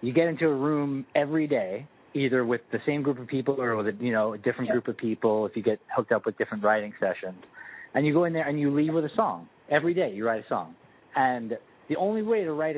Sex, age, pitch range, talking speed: male, 30-49, 115-155 Hz, 265 wpm